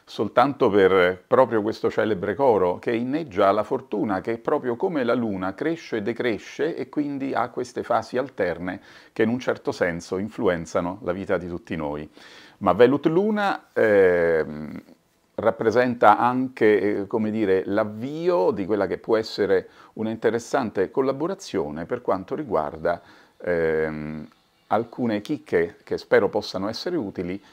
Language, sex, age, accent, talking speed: Italian, male, 50-69, native, 135 wpm